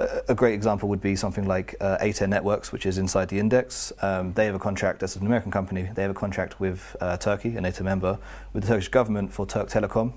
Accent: British